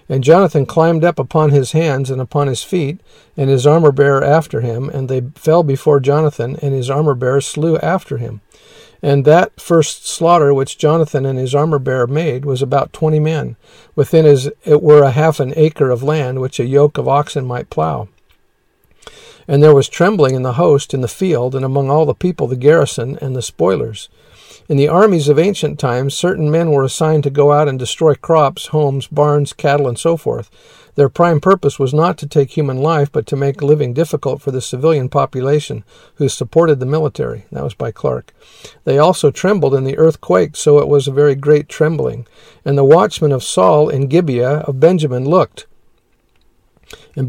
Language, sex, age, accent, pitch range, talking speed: English, male, 50-69, American, 135-155 Hz, 190 wpm